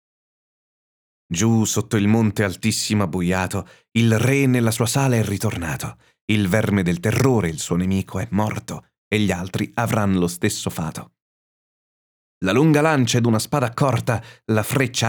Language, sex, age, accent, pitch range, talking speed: Italian, male, 30-49, native, 95-125 Hz, 150 wpm